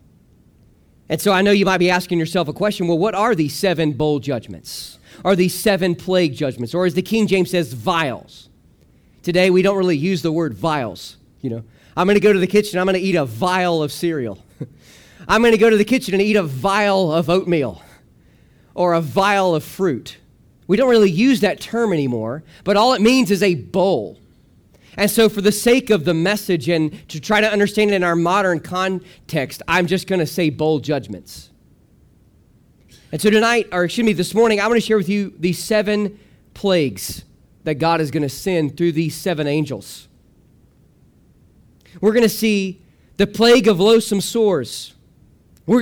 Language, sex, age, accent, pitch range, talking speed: English, male, 40-59, American, 160-210 Hz, 195 wpm